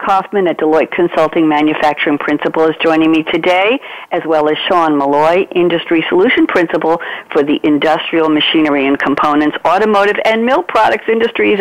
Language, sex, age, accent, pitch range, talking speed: English, female, 50-69, American, 155-195 Hz, 150 wpm